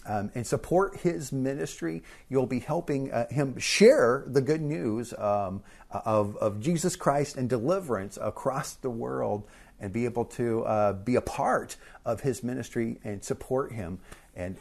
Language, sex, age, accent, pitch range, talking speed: English, male, 40-59, American, 115-170 Hz, 160 wpm